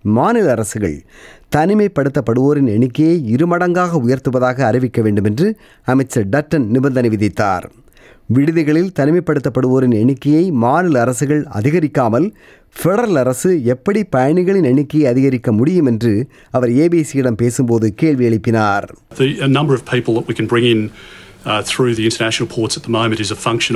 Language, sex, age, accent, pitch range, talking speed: Tamil, male, 30-49, native, 115-155 Hz, 80 wpm